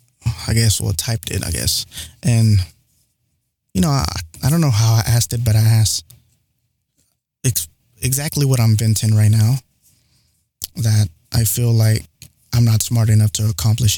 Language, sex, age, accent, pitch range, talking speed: English, male, 20-39, American, 110-120 Hz, 165 wpm